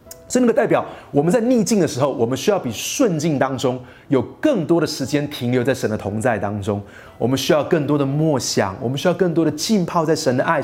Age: 30-49